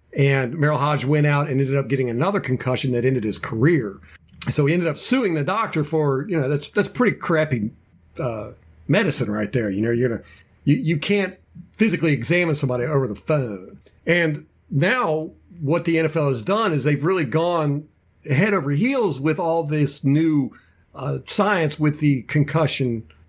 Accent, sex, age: American, male, 50-69